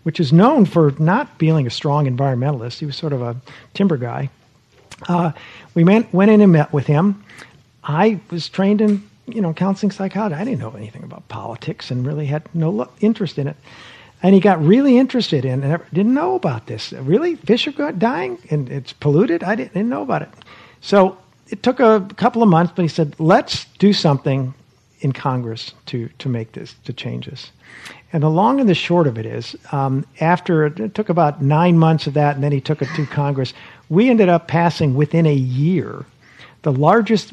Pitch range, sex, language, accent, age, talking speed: 135-195 Hz, male, English, American, 50-69, 205 wpm